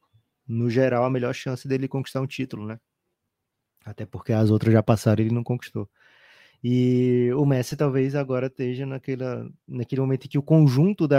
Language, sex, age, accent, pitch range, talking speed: Portuguese, male, 20-39, Brazilian, 110-130 Hz, 180 wpm